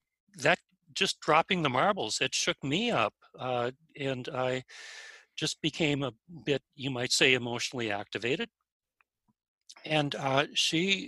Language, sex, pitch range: English, male, 130-165 Hz